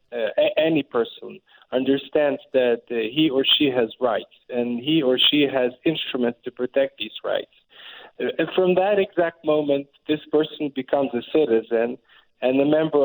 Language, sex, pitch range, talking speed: English, male, 130-160 Hz, 160 wpm